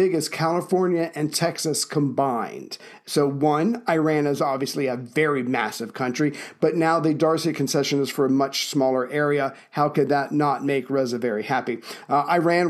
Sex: male